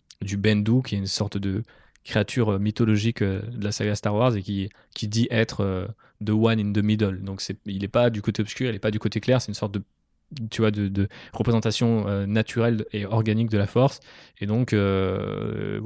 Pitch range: 100-115 Hz